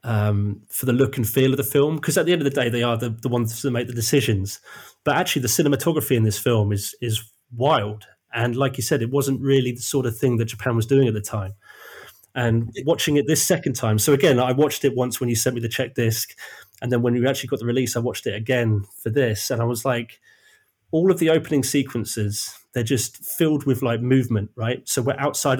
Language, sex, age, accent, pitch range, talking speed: English, male, 30-49, British, 115-140 Hz, 245 wpm